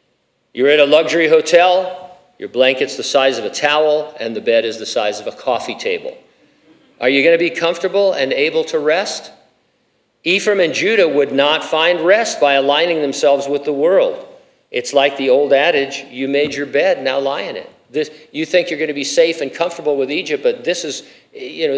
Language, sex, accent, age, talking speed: English, male, American, 50-69, 205 wpm